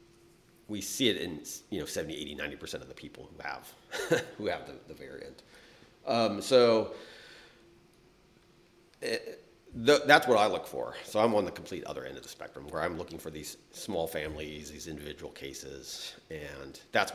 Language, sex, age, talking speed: English, male, 40-59, 170 wpm